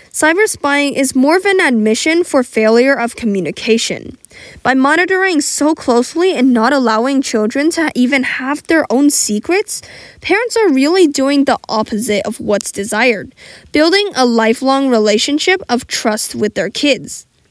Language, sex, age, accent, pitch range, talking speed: English, female, 10-29, American, 235-310 Hz, 145 wpm